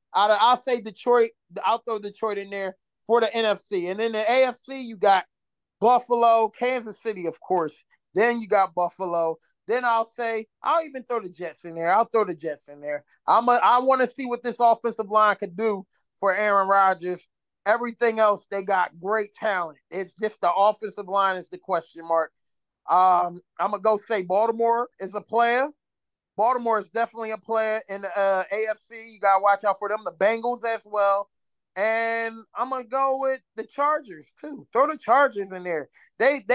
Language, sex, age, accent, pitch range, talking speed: English, male, 20-39, American, 195-240 Hz, 195 wpm